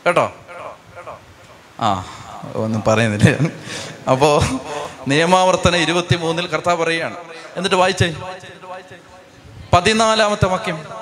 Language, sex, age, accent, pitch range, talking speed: Malayalam, male, 30-49, native, 175-230 Hz, 80 wpm